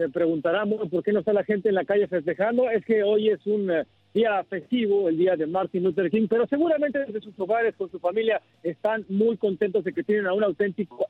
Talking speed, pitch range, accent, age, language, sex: 225 wpm, 180-225 Hz, Mexican, 50-69, Spanish, male